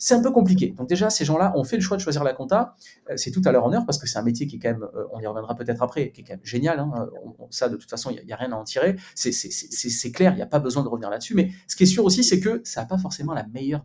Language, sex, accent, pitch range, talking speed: French, male, French, 120-180 Hz, 345 wpm